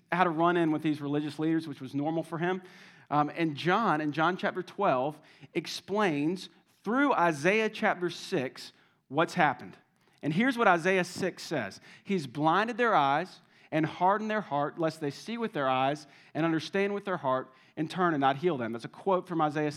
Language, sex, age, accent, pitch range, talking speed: English, male, 40-59, American, 150-190 Hz, 190 wpm